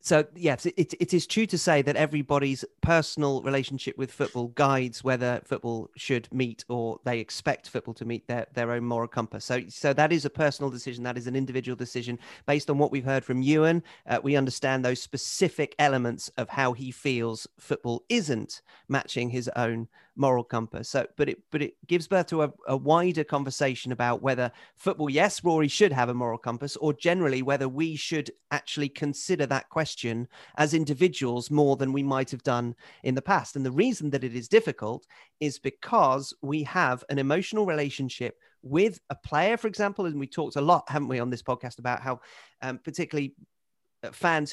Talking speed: 195 wpm